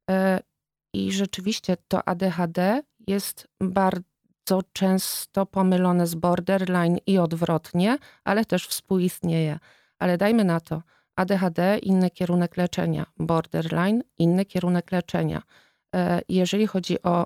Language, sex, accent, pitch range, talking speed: Polish, female, native, 165-190 Hz, 105 wpm